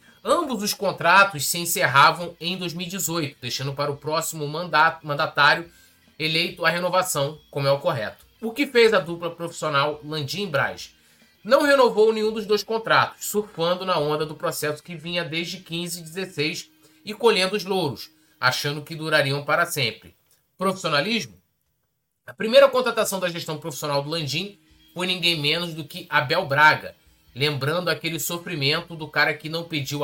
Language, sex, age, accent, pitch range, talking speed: Portuguese, male, 20-39, Brazilian, 145-195 Hz, 160 wpm